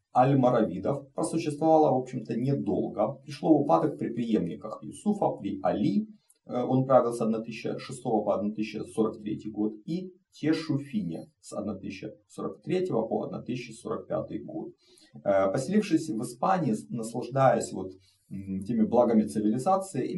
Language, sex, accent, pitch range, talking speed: Russian, male, native, 110-160 Hz, 105 wpm